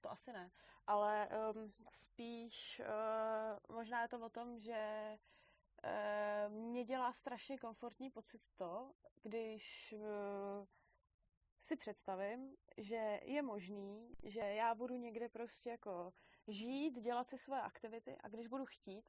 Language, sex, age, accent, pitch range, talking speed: Czech, female, 20-39, native, 205-235 Hz, 120 wpm